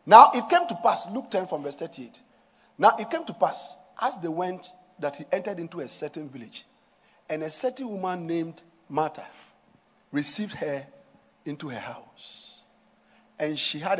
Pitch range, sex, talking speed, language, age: 155-245 Hz, male, 165 wpm, English, 50-69